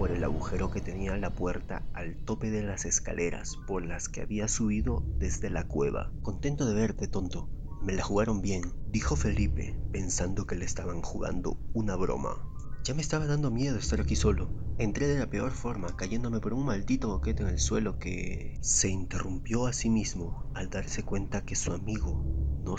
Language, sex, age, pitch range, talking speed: Spanish, male, 30-49, 85-105 Hz, 185 wpm